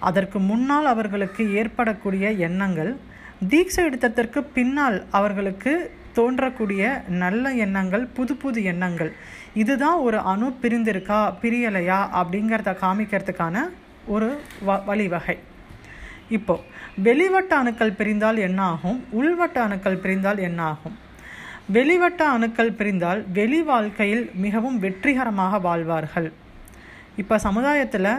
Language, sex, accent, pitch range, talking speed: Tamil, female, native, 195-255 Hz, 95 wpm